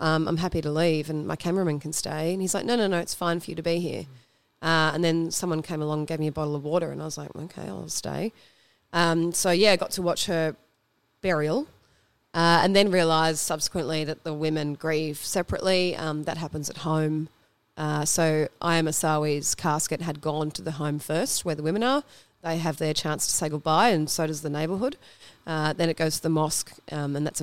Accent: Australian